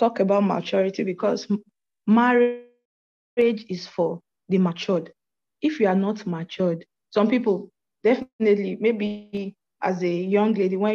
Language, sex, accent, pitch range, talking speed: English, female, Nigerian, 180-225 Hz, 125 wpm